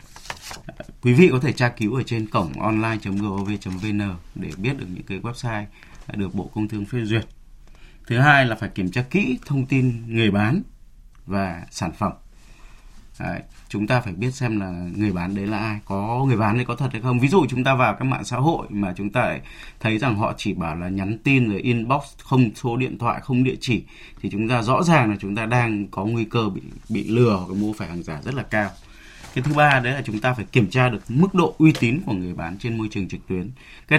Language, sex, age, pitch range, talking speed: Vietnamese, male, 20-39, 105-130 Hz, 230 wpm